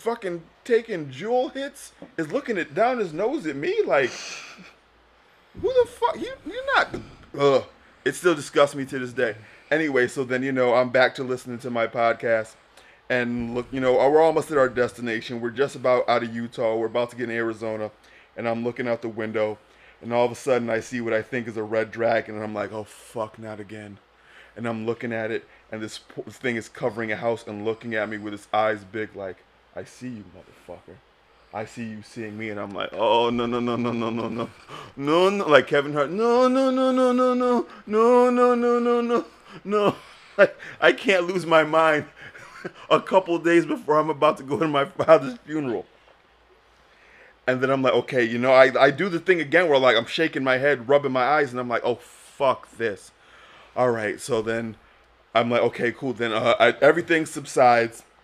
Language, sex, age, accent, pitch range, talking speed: English, male, 20-39, American, 115-160 Hz, 205 wpm